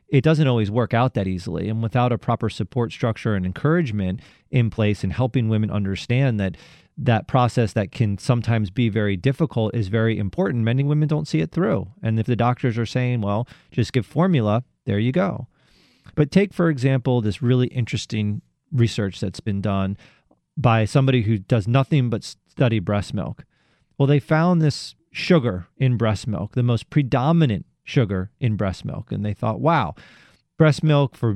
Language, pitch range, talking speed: English, 110-145 Hz, 180 wpm